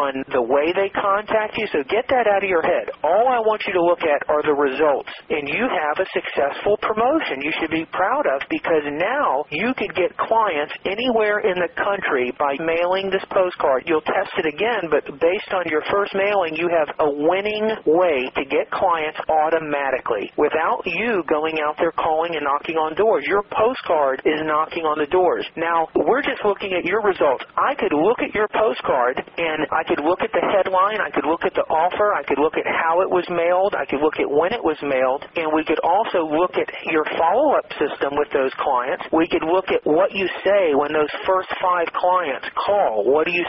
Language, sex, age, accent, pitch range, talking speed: English, male, 40-59, American, 155-200 Hz, 210 wpm